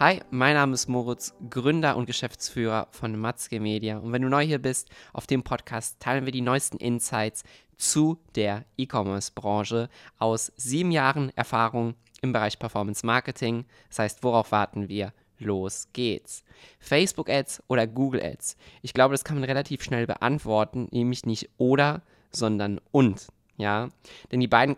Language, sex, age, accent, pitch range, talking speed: German, male, 20-39, German, 110-135 Hz, 150 wpm